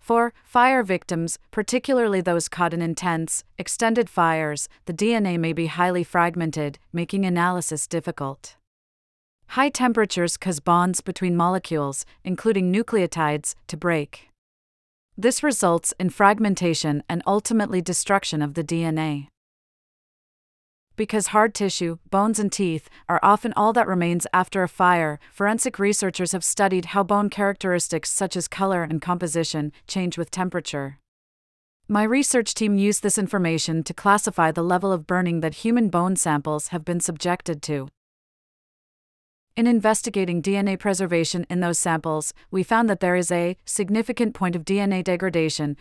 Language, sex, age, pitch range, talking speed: English, female, 40-59, 165-205 Hz, 140 wpm